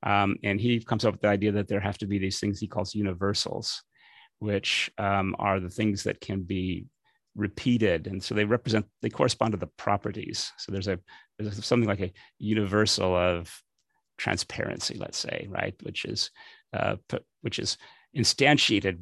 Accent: American